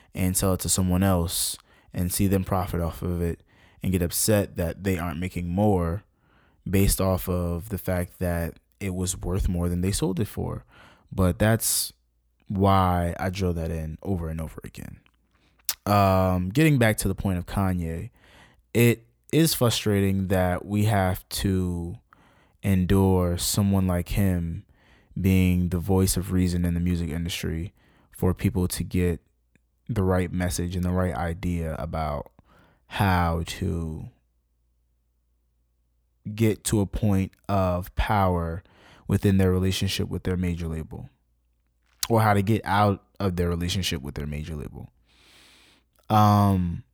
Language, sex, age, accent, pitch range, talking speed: English, male, 20-39, American, 85-100 Hz, 145 wpm